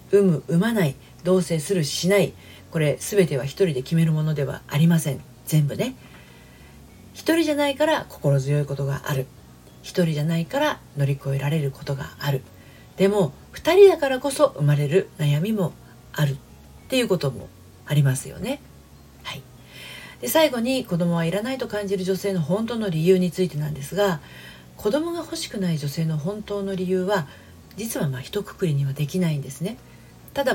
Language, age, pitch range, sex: Japanese, 40-59, 145-220 Hz, female